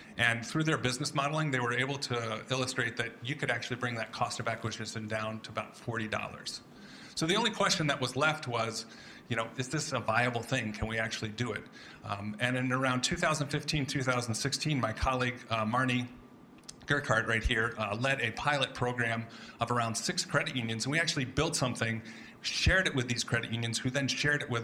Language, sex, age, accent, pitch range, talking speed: English, male, 40-59, American, 115-140 Hz, 195 wpm